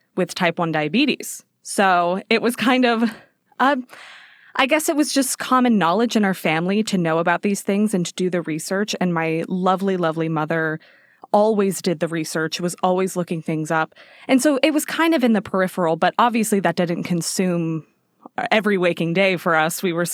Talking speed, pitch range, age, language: 195 wpm, 170-215 Hz, 20-39, English